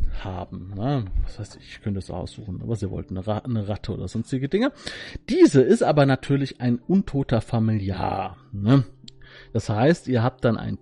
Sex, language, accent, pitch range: male, German, German, 110-160 Hz